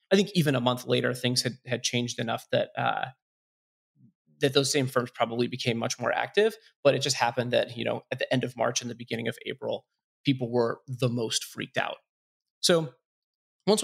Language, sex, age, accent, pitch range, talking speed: English, male, 30-49, American, 125-170 Hz, 205 wpm